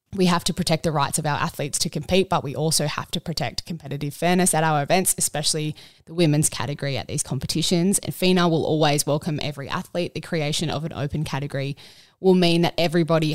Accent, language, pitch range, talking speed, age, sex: Australian, English, 145-175 Hz, 205 wpm, 20-39, female